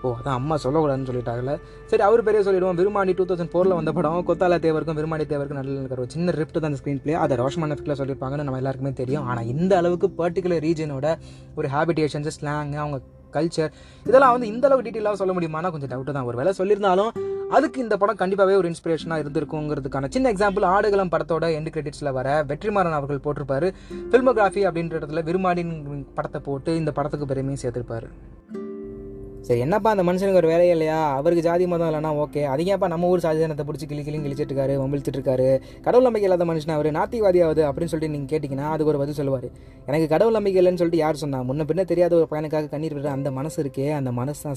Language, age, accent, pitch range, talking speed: Tamil, 20-39, native, 145-180 Hz, 185 wpm